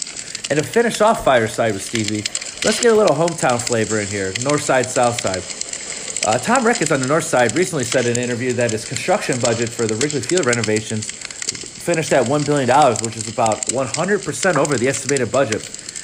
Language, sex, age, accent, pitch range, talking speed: English, male, 30-49, American, 115-150 Hz, 205 wpm